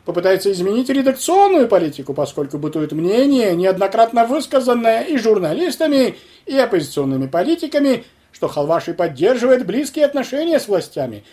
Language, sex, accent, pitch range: Russian, male, native, 175-275 Hz